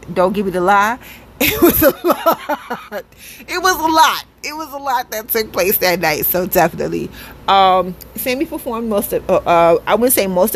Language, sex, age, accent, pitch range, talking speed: English, female, 30-49, American, 175-220 Hz, 200 wpm